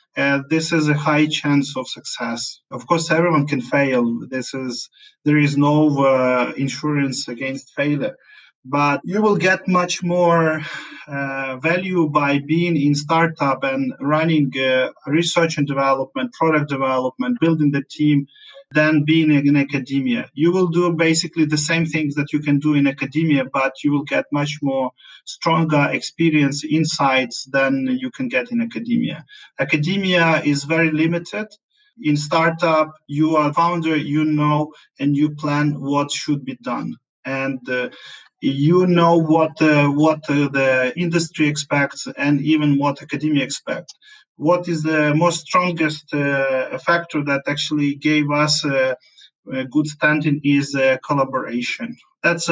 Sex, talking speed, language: male, 150 wpm, English